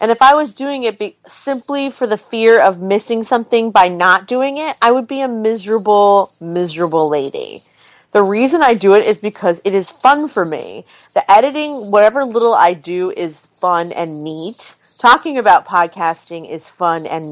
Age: 30-49